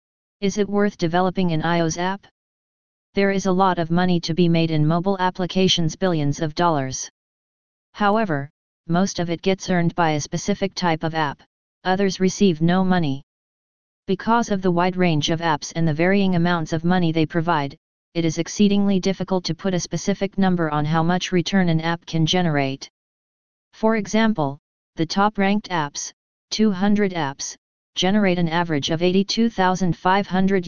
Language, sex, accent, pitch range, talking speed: English, female, American, 165-190 Hz, 160 wpm